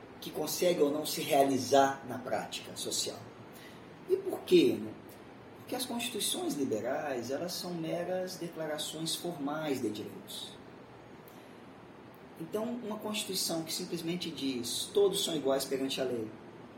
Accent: Brazilian